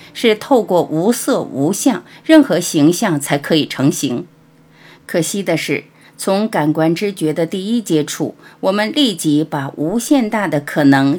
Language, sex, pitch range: Chinese, female, 150-215 Hz